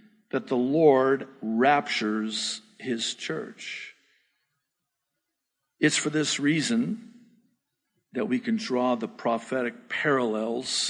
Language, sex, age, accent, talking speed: English, male, 50-69, American, 95 wpm